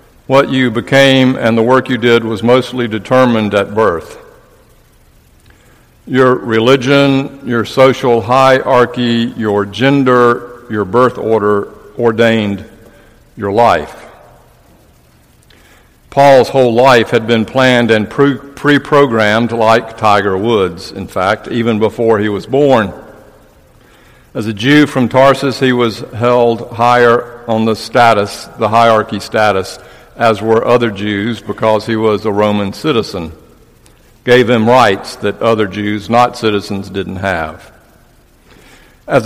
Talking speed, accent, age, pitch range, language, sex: 120 wpm, American, 60-79, 110-130 Hz, English, male